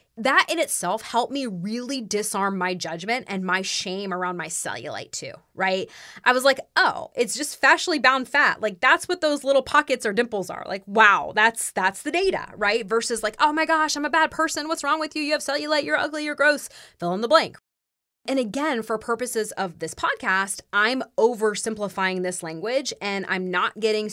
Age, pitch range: 20-39, 185-260 Hz